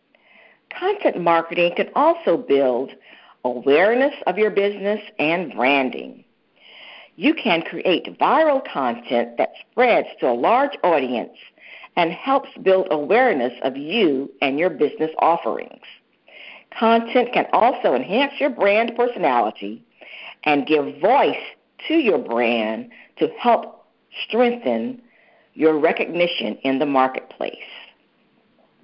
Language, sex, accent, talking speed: English, female, American, 110 wpm